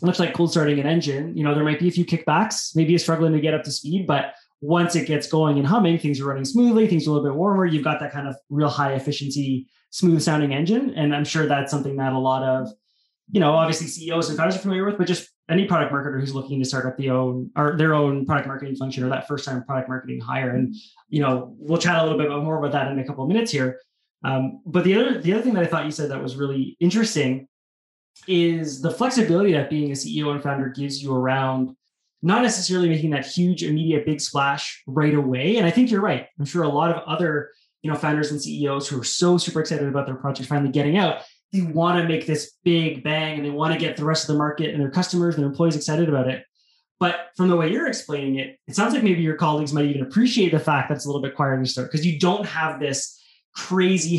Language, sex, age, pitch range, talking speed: English, male, 20-39, 140-170 Hz, 255 wpm